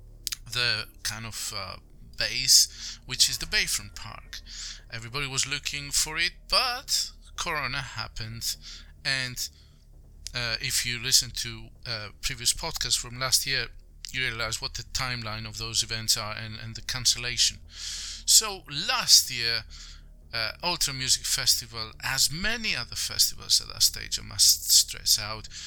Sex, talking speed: male, 145 wpm